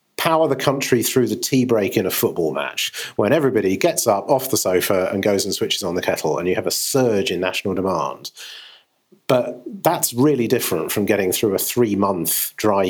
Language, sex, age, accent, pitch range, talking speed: English, male, 40-59, British, 100-120 Hz, 200 wpm